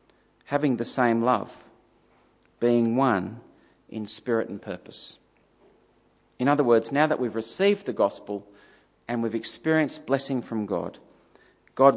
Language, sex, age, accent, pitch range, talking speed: English, male, 40-59, Australian, 120-160 Hz, 130 wpm